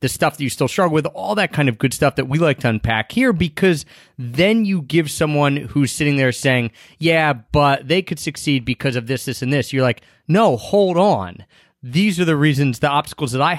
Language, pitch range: English, 130-170 Hz